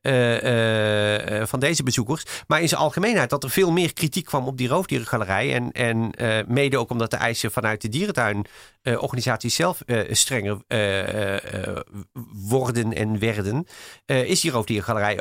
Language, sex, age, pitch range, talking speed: Dutch, male, 40-59, 115-155 Hz, 170 wpm